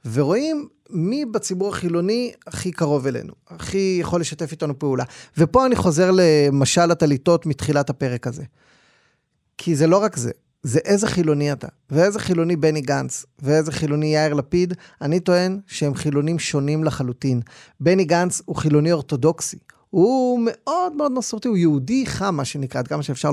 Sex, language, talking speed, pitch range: male, Hebrew, 155 wpm, 140-180 Hz